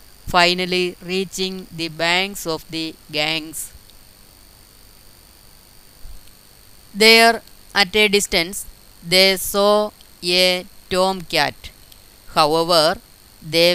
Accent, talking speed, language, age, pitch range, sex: native, 80 wpm, Malayalam, 20-39, 135-190 Hz, female